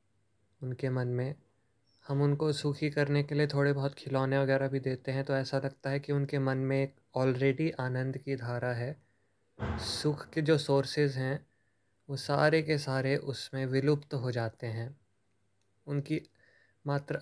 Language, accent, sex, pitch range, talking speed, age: Hindi, native, male, 115-140 Hz, 160 wpm, 20-39